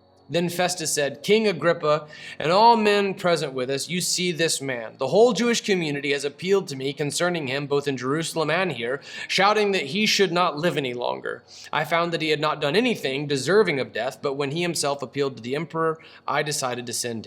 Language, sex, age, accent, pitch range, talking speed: English, male, 30-49, American, 135-180 Hz, 210 wpm